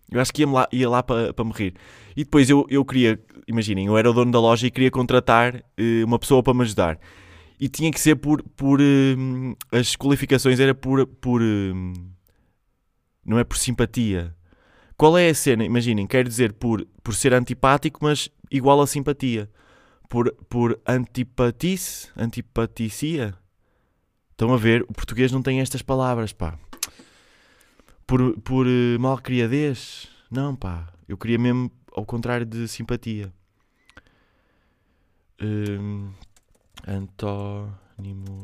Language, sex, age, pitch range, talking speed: Portuguese, male, 20-39, 100-130 Hz, 135 wpm